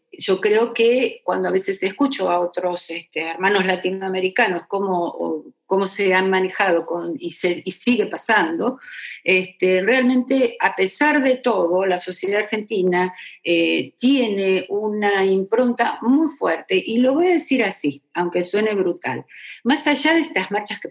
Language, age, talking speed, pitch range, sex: Spanish, 50-69, 150 wpm, 165-220 Hz, female